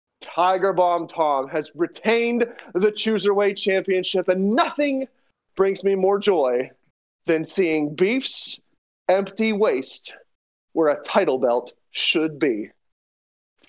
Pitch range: 185-265 Hz